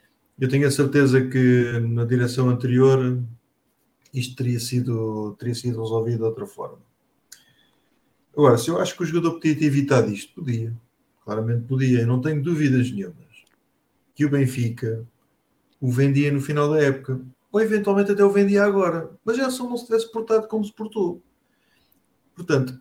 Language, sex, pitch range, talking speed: English, male, 125-175 Hz, 165 wpm